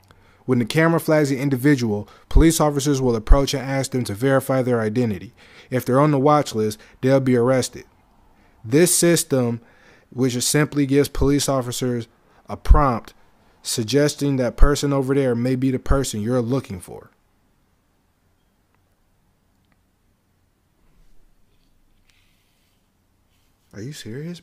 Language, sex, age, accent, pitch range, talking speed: English, male, 20-39, American, 120-150 Hz, 125 wpm